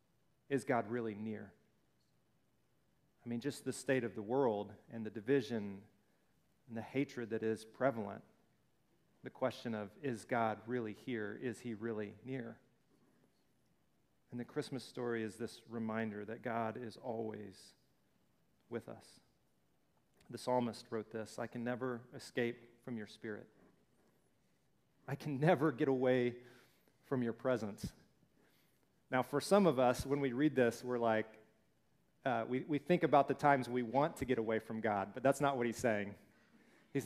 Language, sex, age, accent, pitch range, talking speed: English, male, 40-59, American, 115-140 Hz, 155 wpm